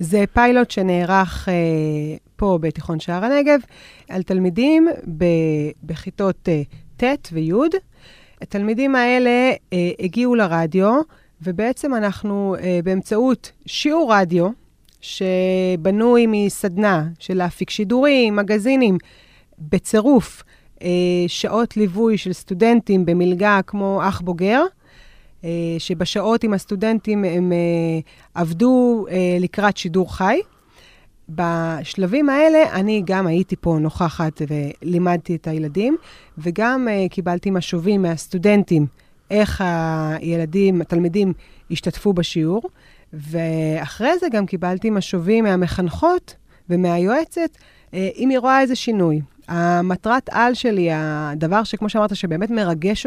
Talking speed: 100 wpm